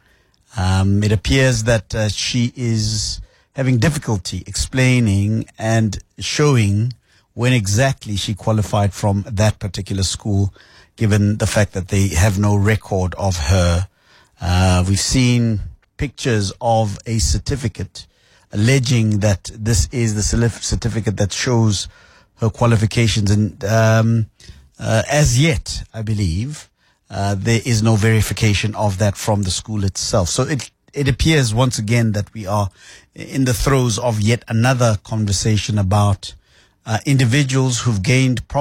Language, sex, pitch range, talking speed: English, male, 100-120 Hz, 135 wpm